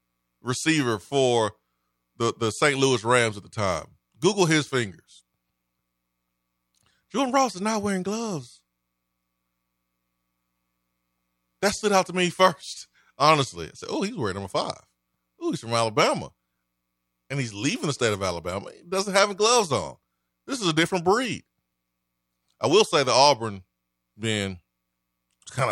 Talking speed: 145 wpm